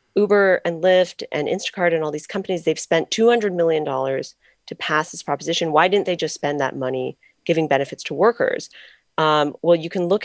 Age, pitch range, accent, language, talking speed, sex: 30-49, 135-175 Hz, American, English, 195 wpm, female